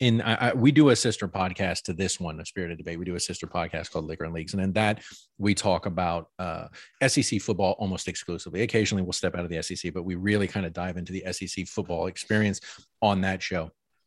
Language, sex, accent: English, male, American